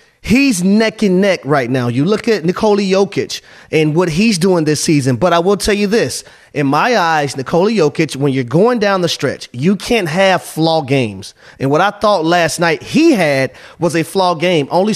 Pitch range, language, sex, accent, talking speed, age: 165-205 Hz, English, male, American, 210 wpm, 30-49